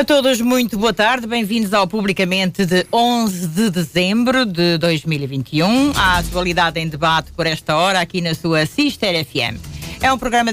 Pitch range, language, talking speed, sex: 180-240 Hz, Portuguese, 165 wpm, female